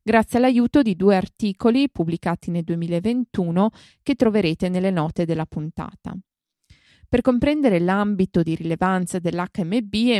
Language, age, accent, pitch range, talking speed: Italian, 20-39, native, 175-225 Hz, 125 wpm